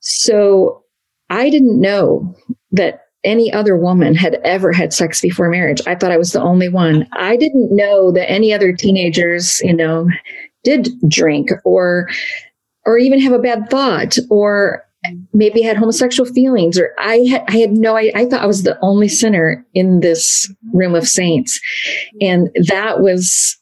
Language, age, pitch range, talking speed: English, 40-59, 170-215 Hz, 170 wpm